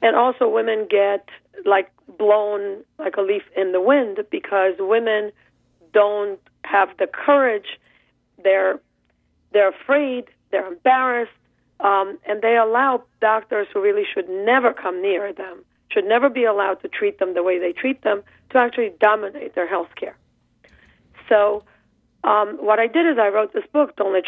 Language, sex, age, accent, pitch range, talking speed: English, female, 40-59, American, 195-260 Hz, 160 wpm